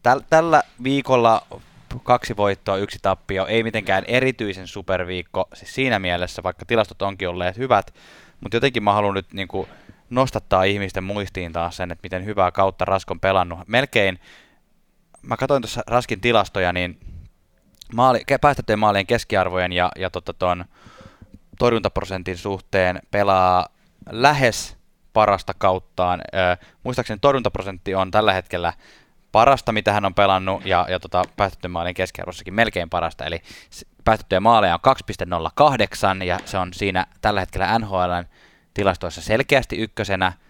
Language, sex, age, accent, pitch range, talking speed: Finnish, male, 20-39, native, 90-110 Hz, 120 wpm